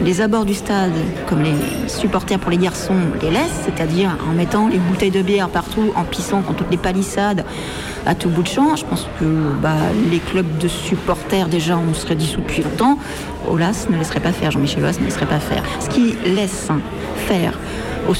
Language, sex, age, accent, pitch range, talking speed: French, female, 40-59, French, 180-225 Hz, 200 wpm